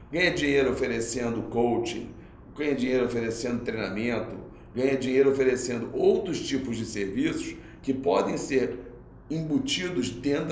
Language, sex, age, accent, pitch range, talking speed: Portuguese, male, 40-59, Brazilian, 115-155 Hz, 115 wpm